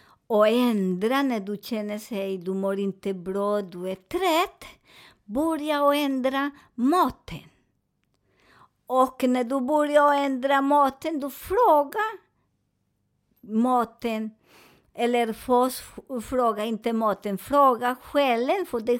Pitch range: 225-285 Hz